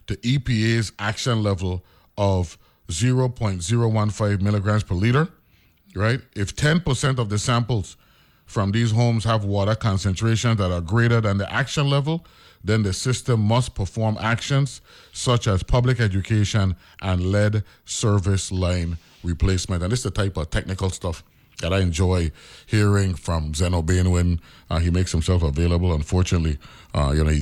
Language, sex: English, male